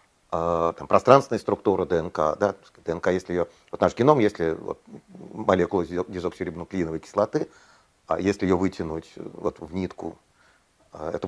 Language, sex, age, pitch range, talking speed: Russian, male, 40-59, 85-105 Hz, 130 wpm